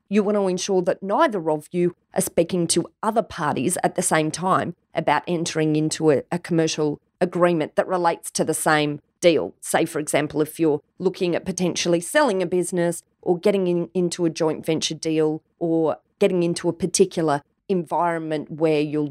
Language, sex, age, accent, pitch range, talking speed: English, female, 30-49, Australian, 165-210 Hz, 175 wpm